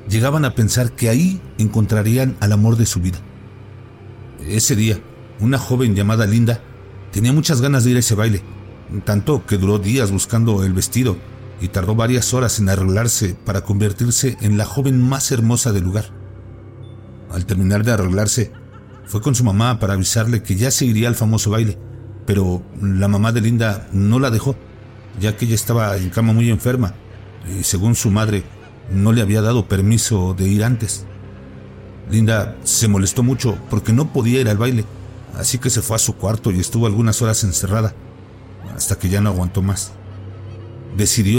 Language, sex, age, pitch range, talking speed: Spanish, male, 50-69, 100-120 Hz, 175 wpm